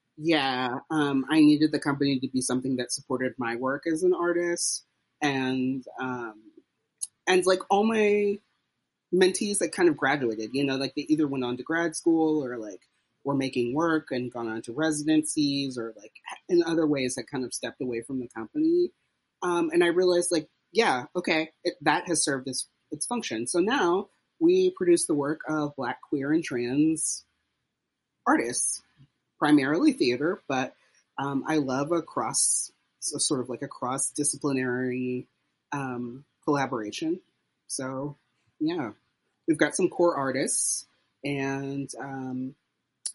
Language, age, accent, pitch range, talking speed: English, 30-49, American, 125-165 Hz, 155 wpm